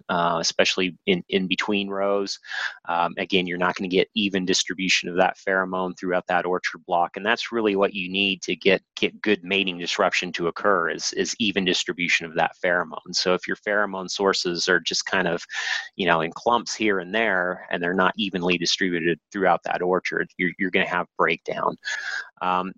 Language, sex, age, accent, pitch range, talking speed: English, male, 30-49, American, 85-100 Hz, 195 wpm